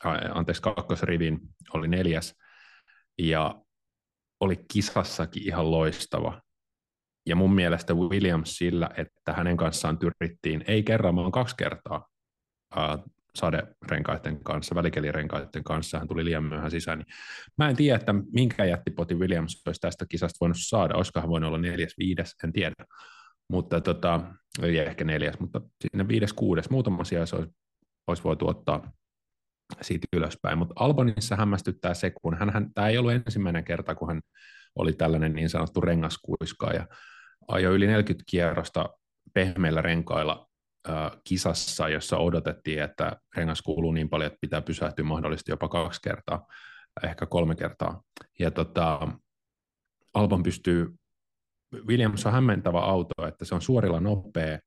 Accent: native